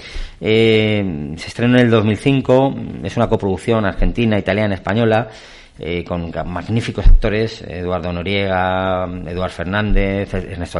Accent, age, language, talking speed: Spanish, 40-59, Spanish, 115 wpm